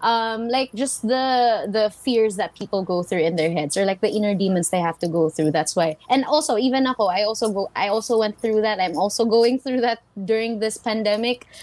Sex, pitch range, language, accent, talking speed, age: female, 205-260 Hz, English, Filipino, 230 wpm, 20-39